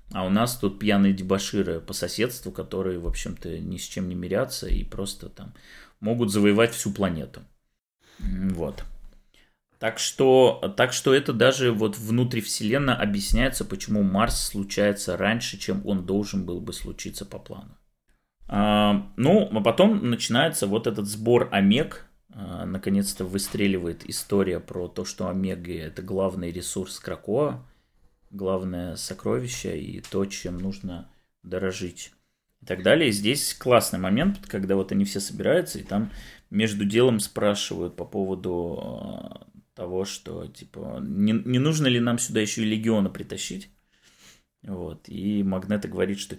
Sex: male